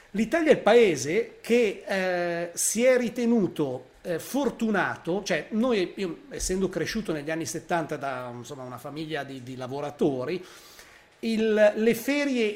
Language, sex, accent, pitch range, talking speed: Italian, male, native, 160-215 Hz, 140 wpm